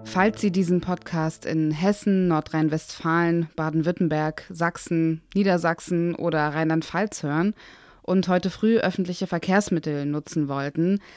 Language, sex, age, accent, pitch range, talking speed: German, female, 20-39, German, 160-190 Hz, 105 wpm